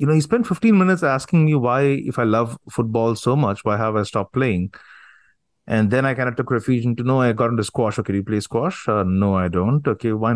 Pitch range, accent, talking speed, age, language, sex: 105-130 Hz, Indian, 260 wpm, 30-49, English, male